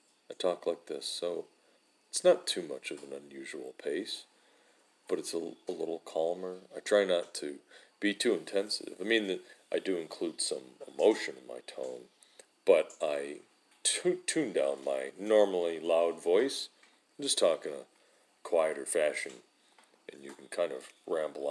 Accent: American